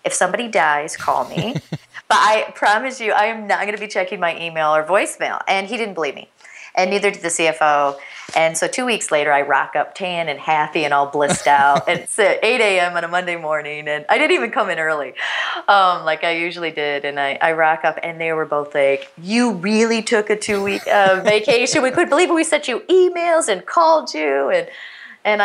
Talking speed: 220 wpm